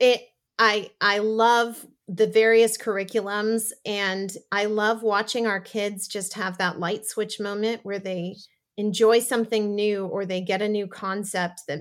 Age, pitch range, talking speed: 30-49, 190-225 Hz, 160 wpm